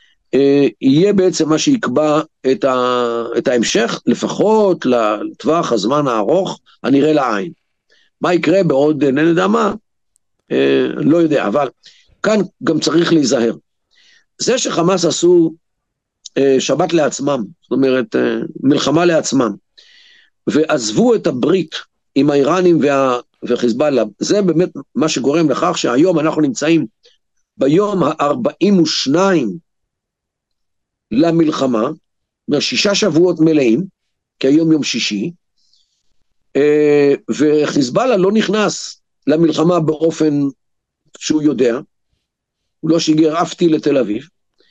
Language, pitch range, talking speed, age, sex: Hebrew, 145-185 Hz, 100 wpm, 50-69, male